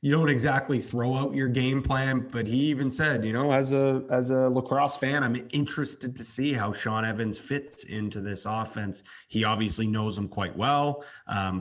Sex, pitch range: male, 100-125 Hz